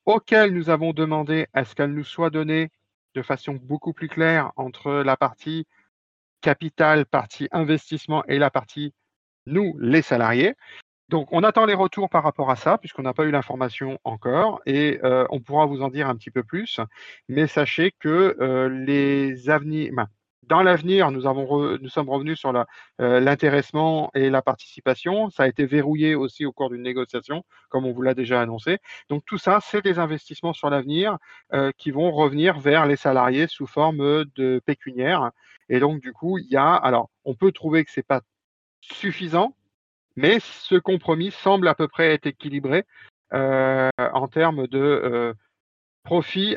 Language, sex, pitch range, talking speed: French, male, 130-160 Hz, 180 wpm